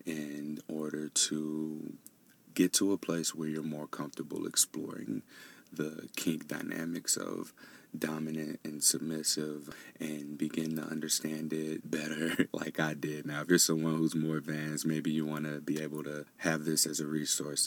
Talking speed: 160 wpm